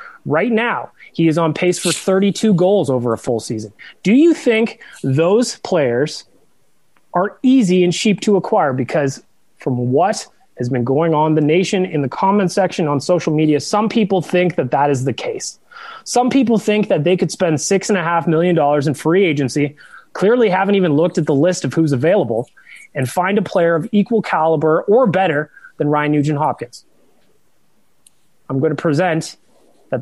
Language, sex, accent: English, male, American